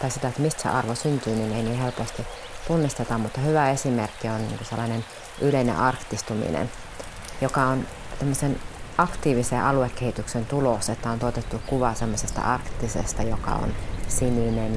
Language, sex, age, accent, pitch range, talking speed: Finnish, female, 30-49, native, 110-135 Hz, 135 wpm